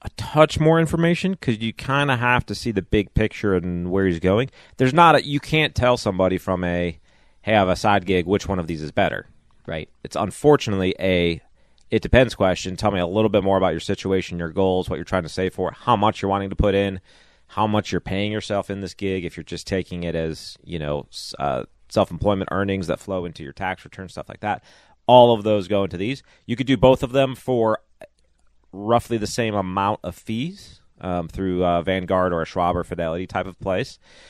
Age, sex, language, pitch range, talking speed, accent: 30-49, male, English, 90-115 Hz, 225 wpm, American